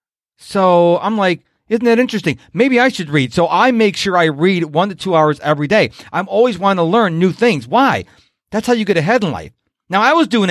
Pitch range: 150-220 Hz